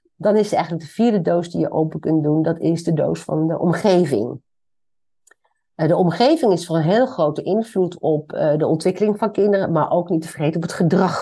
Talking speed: 205 wpm